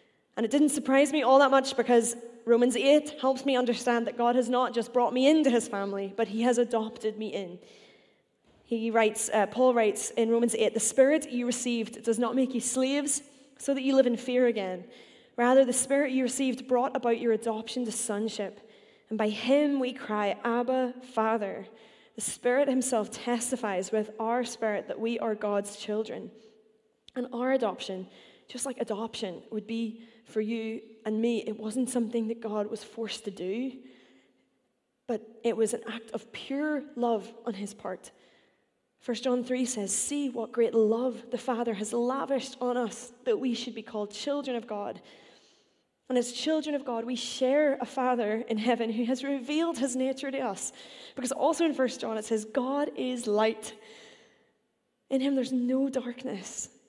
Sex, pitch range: female, 220-260 Hz